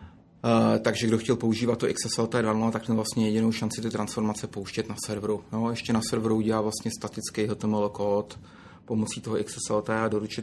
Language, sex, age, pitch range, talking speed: Czech, male, 30-49, 110-120 Hz, 175 wpm